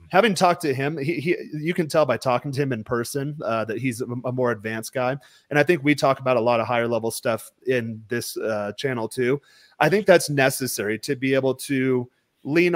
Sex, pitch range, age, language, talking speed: male, 120-150 Hz, 30-49, English, 230 wpm